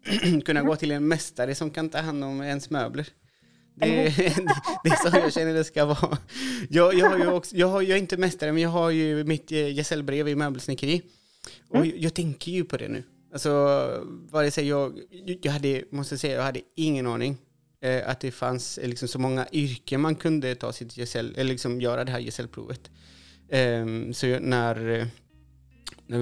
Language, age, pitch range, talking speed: Swedish, 30-49, 125-160 Hz, 190 wpm